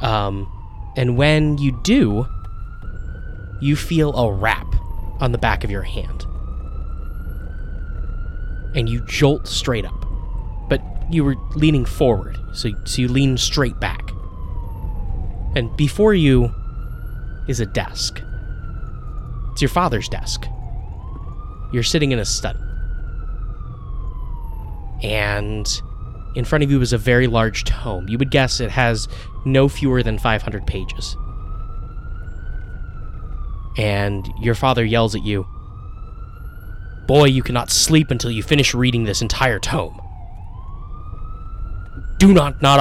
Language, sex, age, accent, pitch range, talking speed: English, male, 20-39, American, 90-120 Hz, 120 wpm